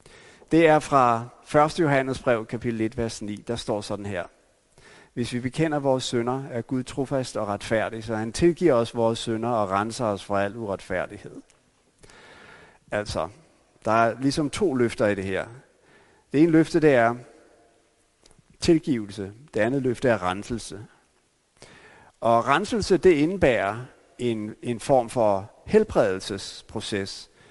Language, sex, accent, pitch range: Danish, male, native, 115-150 Hz